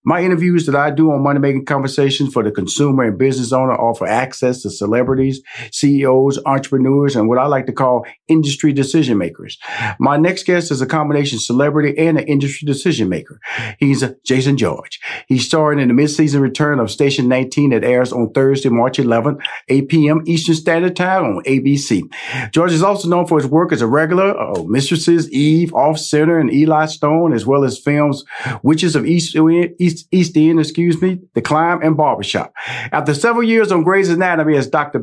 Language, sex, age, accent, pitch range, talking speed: English, male, 40-59, American, 135-175 Hz, 190 wpm